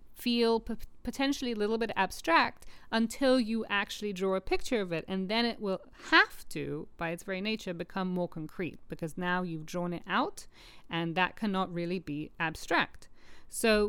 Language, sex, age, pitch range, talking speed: English, female, 40-59, 180-235 Hz, 175 wpm